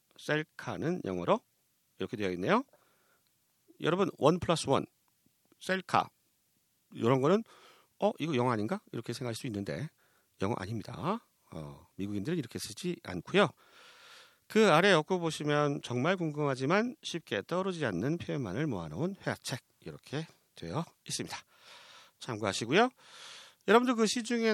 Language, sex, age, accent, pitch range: Korean, male, 40-59, native, 120-200 Hz